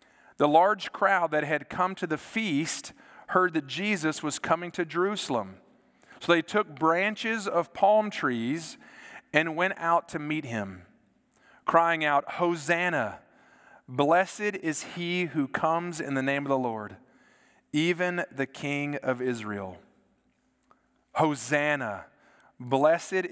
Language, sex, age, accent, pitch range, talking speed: English, male, 40-59, American, 125-160 Hz, 130 wpm